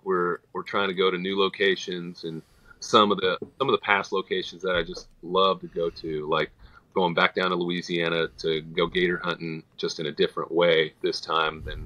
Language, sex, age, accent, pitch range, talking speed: English, male, 30-49, American, 85-115 Hz, 215 wpm